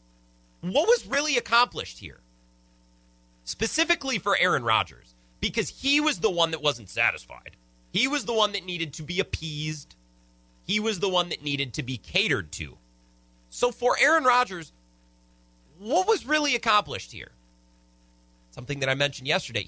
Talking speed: 150 wpm